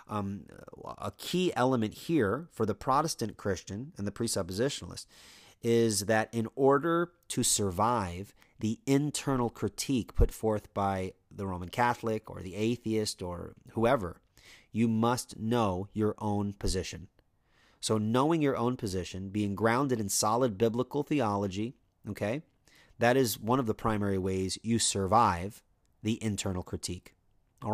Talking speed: 135 wpm